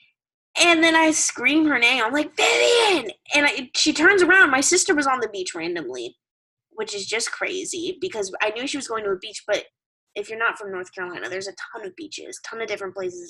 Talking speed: 225 wpm